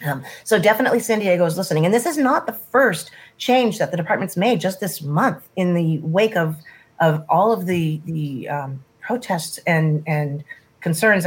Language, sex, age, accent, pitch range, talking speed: English, female, 30-49, American, 150-185 Hz, 185 wpm